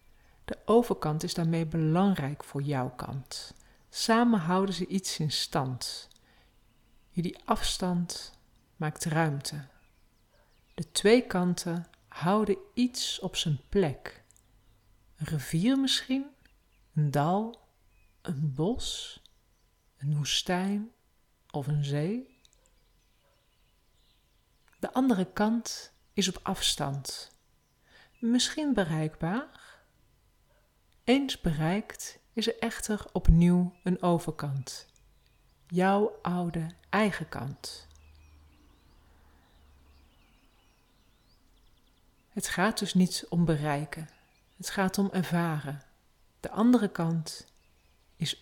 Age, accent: 40-59, Dutch